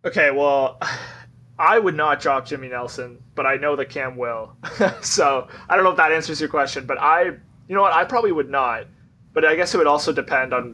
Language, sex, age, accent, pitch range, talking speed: English, male, 20-39, American, 120-145 Hz, 225 wpm